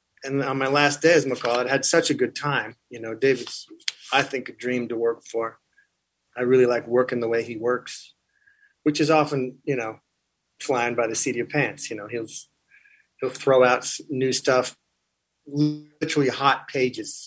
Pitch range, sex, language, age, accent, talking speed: 120-140 Hz, male, English, 30-49, American, 190 wpm